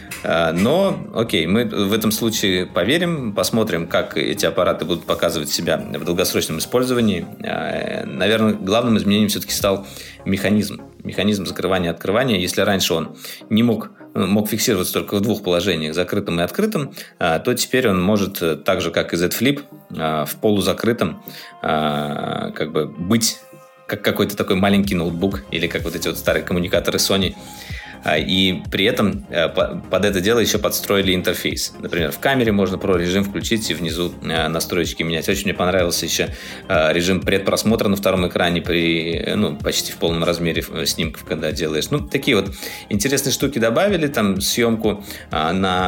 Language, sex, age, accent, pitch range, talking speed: Russian, male, 20-39, native, 85-115 Hz, 145 wpm